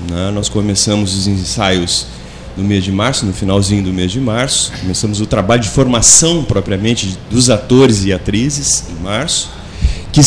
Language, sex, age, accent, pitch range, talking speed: Portuguese, male, 30-49, Brazilian, 100-120 Hz, 160 wpm